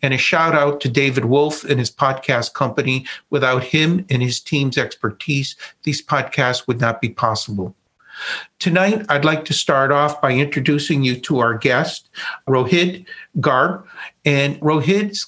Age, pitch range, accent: 50-69, 135-165 Hz, American